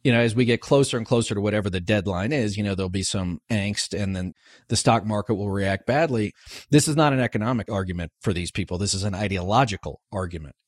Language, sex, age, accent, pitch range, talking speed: English, male, 40-59, American, 105-135 Hz, 230 wpm